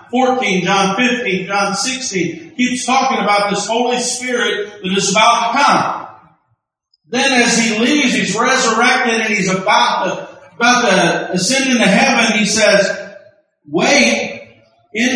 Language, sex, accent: English, male, American